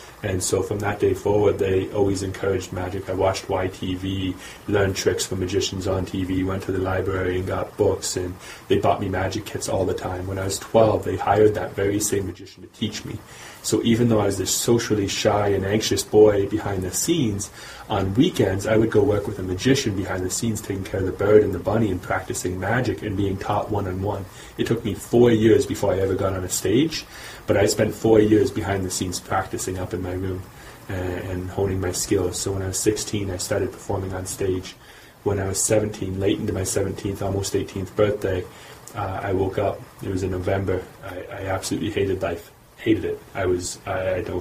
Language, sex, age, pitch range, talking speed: English, male, 30-49, 95-110 Hz, 215 wpm